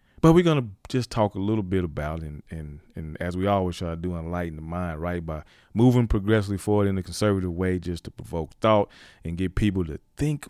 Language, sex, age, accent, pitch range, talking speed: English, male, 30-49, American, 90-115 Hz, 235 wpm